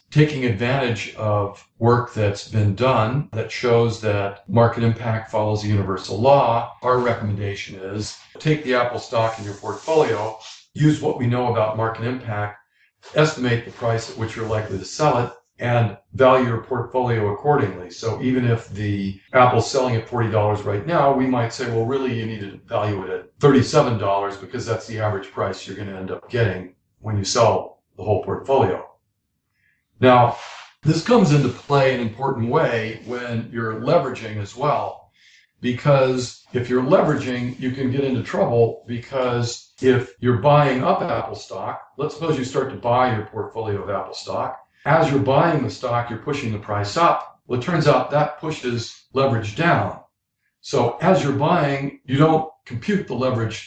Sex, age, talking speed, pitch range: male, 50-69, 170 wpm, 110-130 Hz